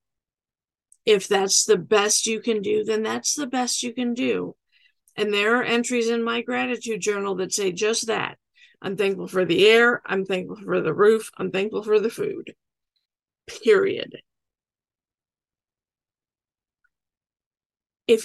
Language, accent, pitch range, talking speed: English, American, 205-245 Hz, 140 wpm